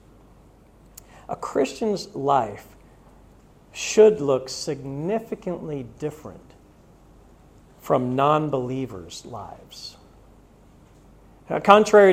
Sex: male